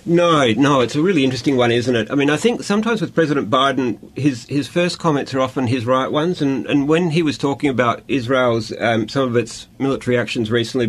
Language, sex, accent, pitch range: English, male, Australian, 115-135 Hz